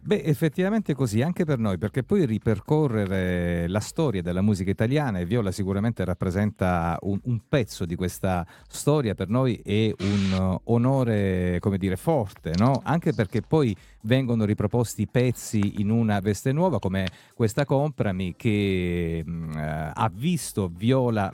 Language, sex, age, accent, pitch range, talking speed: Italian, male, 40-59, native, 100-130 Hz, 145 wpm